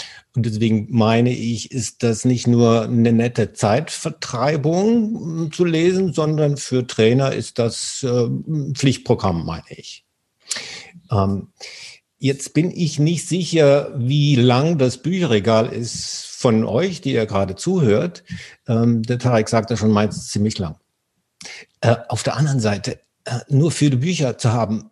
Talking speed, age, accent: 140 wpm, 50-69, German